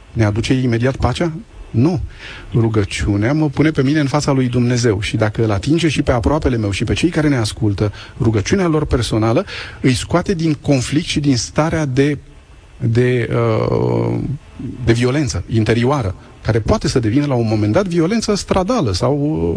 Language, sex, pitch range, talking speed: Romanian, male, 110-155 Hz, 165 wpm